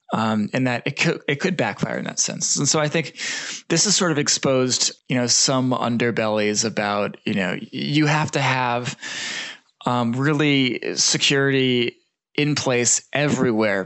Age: 20-39